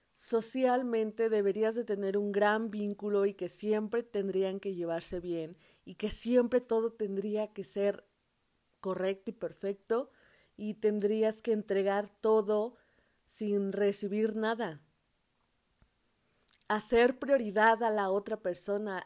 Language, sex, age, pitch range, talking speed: Spanish, female, 30-49, 195-245 Hz, 120 wpm